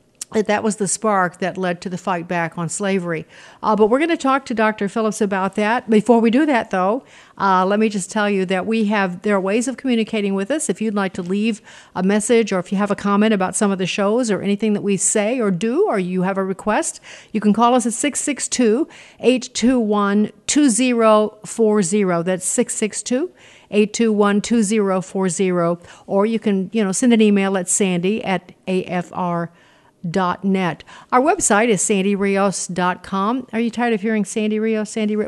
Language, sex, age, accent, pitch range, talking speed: English, female, 50-69, American, 195-225 Hz, 190 wpm